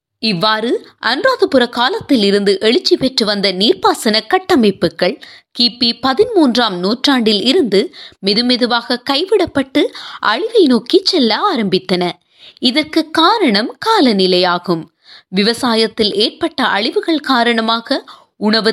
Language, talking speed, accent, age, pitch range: Tamil, 90 wpm, native, 20-39, 215-325 Hz